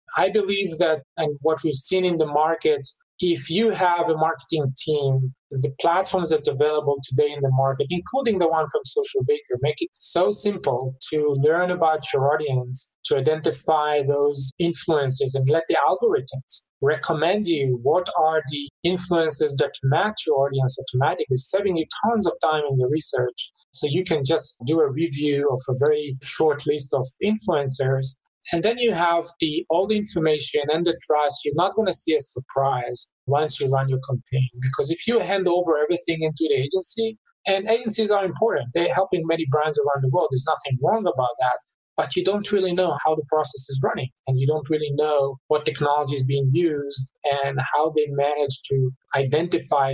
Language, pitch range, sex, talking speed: English, 135-175 Hz, male, 185 wpm